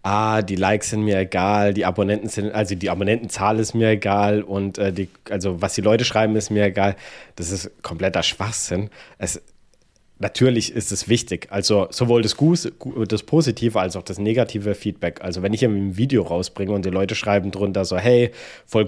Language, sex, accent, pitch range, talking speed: German, male, German, 95-110 Hz, 190 wpm